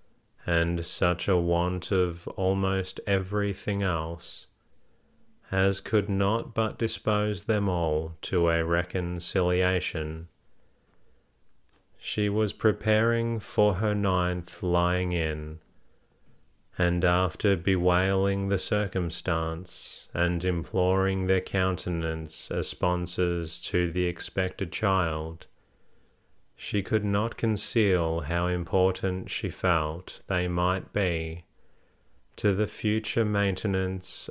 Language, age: English, 30-49